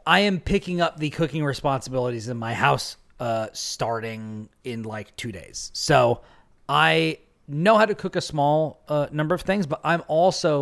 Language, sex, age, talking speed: English, male, 30-49, 175 wpm